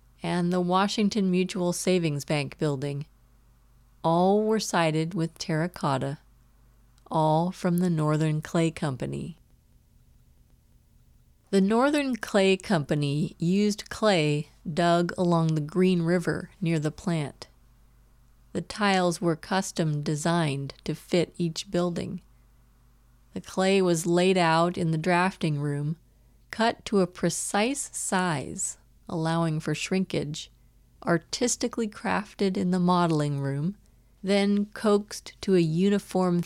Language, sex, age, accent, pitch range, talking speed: English, female, 30-49, American, 150-185 Hz, 110 wpm